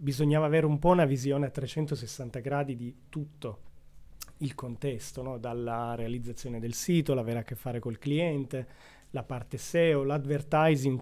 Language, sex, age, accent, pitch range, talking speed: Italian, male, 30-49, native, 120-145 Hz, 150 wpm